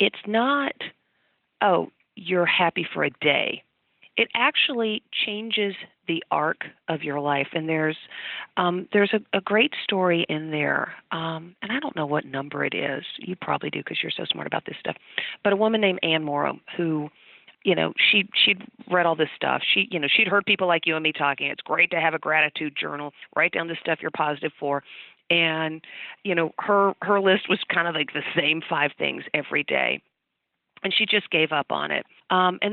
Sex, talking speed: female, 200 wpm